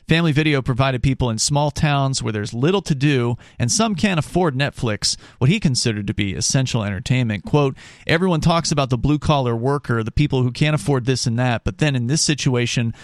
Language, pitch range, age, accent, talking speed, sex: English, 120-150 Hz, 40-59, American, 200 wpm, male